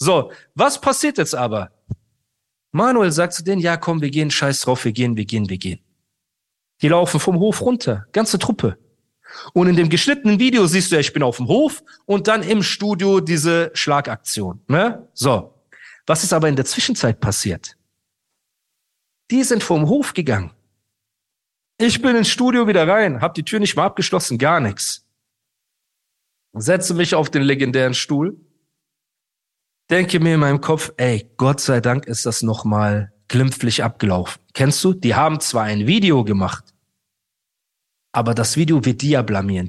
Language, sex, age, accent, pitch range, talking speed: German, male, 40-59, German, 115-180 Hz, 165 wpm